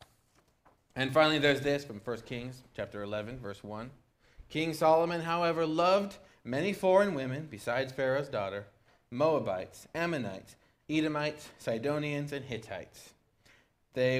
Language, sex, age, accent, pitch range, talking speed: English, male, 30-49, American, 115-150 Hz, 120 wpm